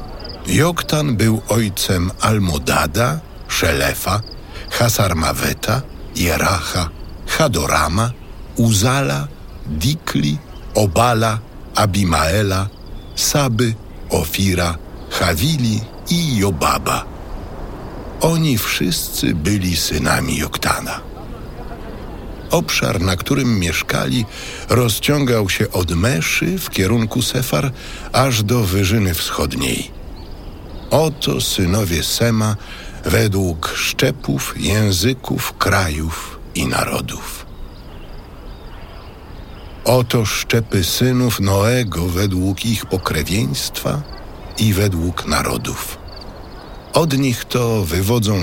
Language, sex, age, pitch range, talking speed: Polish, male, 60-79, 85-115 Hz, 75 wpm